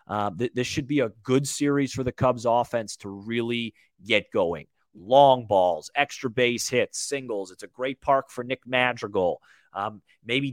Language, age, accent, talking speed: English, 30-49, American, 175 wpm